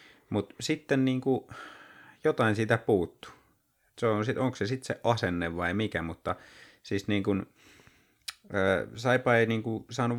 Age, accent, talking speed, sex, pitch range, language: 30-49, native, 140 wpm, male, 90-110 Hz, Finnish